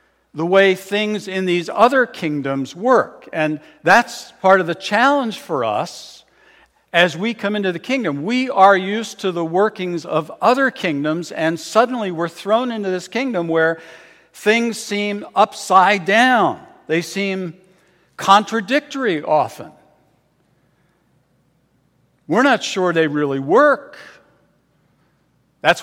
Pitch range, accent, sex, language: 140-220 Hz, American, male, English